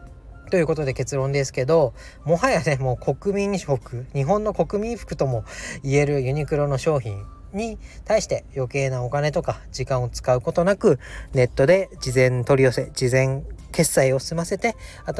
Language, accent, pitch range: Japanese, native, 125-175 Hz